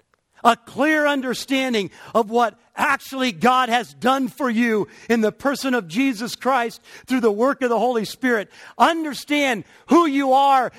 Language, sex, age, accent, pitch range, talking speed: English, male, 50-69, American, 220-270 Hz, 155 wpm